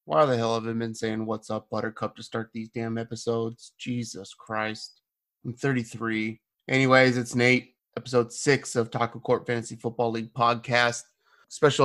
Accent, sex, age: American, male, 30-49